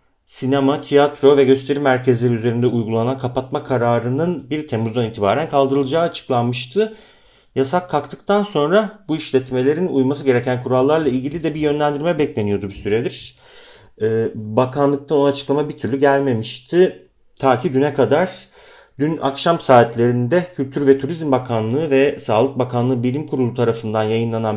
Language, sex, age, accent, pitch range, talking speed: Turkish, male, 40-59, native, 125-150 Hz, 130 wpm